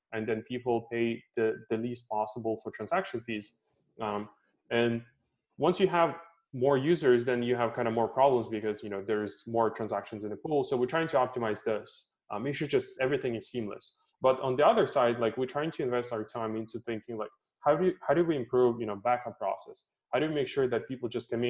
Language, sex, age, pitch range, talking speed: English, male, 20-39, 110-130 Hz, 230 wpm